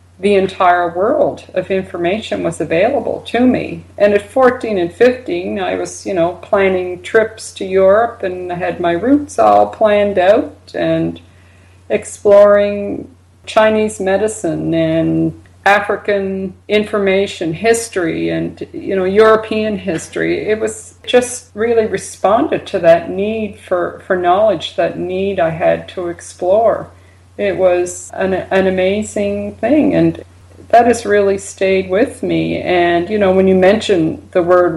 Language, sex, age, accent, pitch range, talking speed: English, female, 50-69, American, 165-205 Hz, 140 wpm